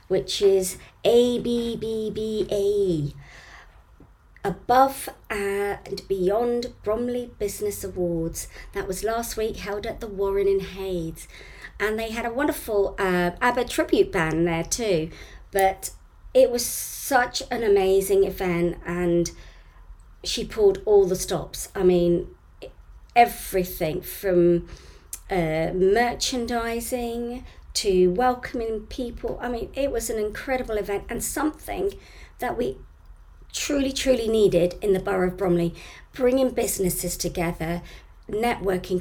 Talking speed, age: 115 wpm, 40-59